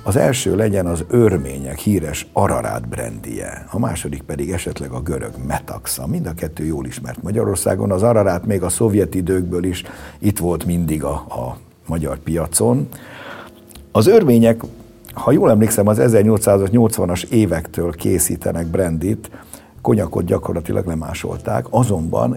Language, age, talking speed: Hungarian, 60-79, 130 wpm